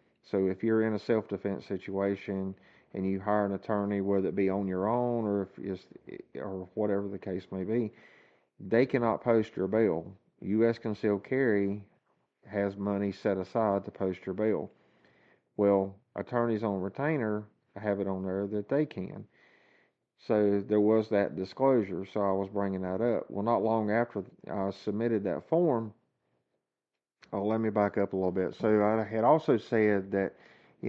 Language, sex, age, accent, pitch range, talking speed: English, male, 50-69, American, 95-110 Hz, 170 wpm